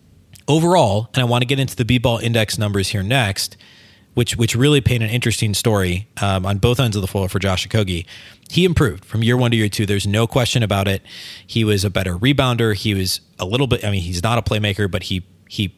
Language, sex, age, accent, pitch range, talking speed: English, male, 30-49, American, 100-125 Hz, 240 wpm